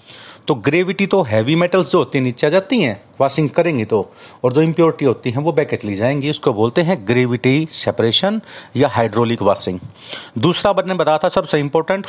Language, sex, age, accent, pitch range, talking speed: Hindi, male, 40-59, native, 120-165 Hz, 60 wpm